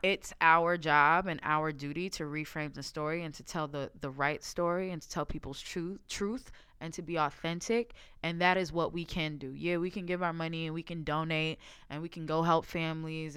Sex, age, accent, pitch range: female, 20-39, American, 150-180 Hz